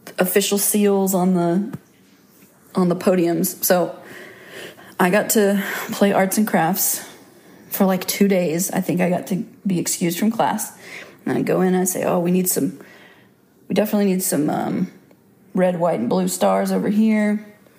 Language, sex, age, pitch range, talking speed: English, female, 30-49, 175-200 Hz, 170 wpm